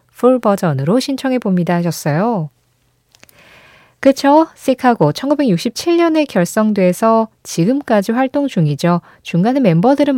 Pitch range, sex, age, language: 170-255 Hz, female, 20-39, Korean